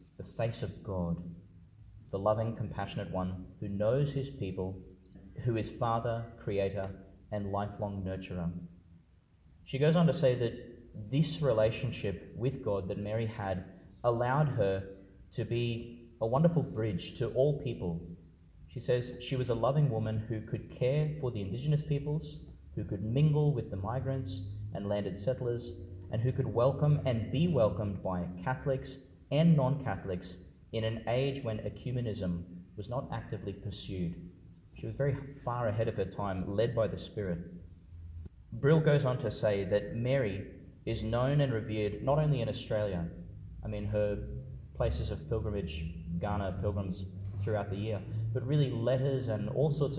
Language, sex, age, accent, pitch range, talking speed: English, male, 30-49, Australian, 95-125 Hz, 155 wpm